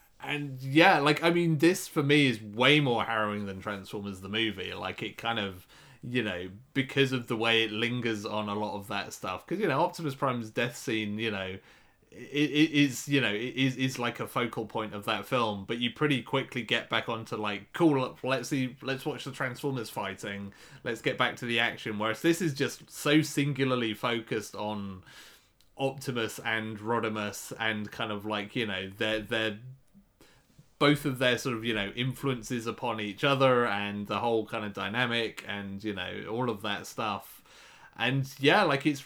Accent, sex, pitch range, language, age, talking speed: British, male, 105-135 Hz, English, 30-49, 195 wpm